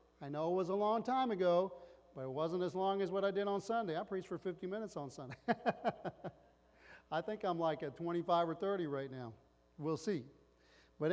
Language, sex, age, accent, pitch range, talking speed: English, male, 40-59, American, 140-195 Hz, 210 wpm